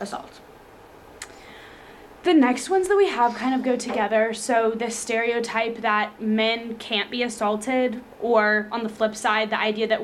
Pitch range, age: 210-240 Hz, 20-39